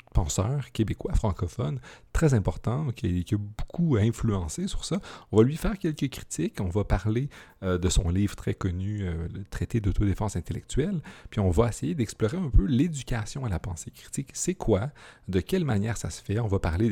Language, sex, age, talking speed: French, male, 40-59, 195 wpm